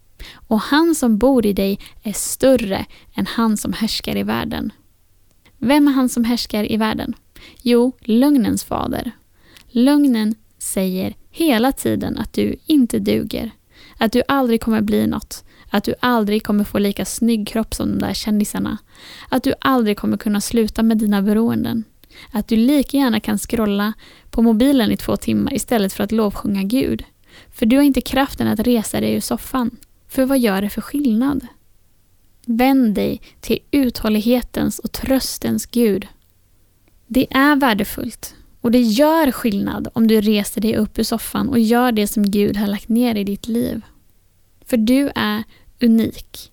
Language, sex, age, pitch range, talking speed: Swedish, female, 10-29, 205-250 Hz, 165 wpm